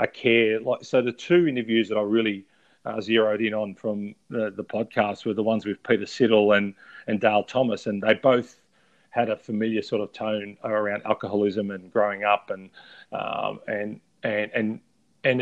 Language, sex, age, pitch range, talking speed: English, male, 40-59, 105-115 Hz, 185 wpm